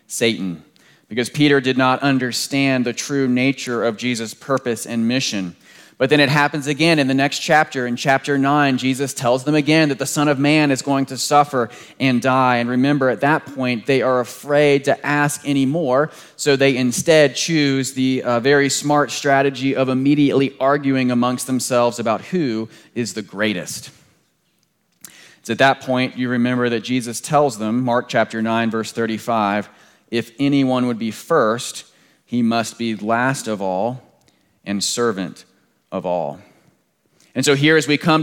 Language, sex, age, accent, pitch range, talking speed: English, male, 30-49, American, 120-145 Hz, 170 wpm